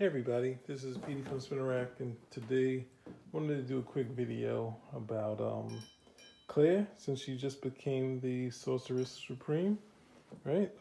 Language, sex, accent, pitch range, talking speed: English, male, American, 120-150 Hz, 150 wpm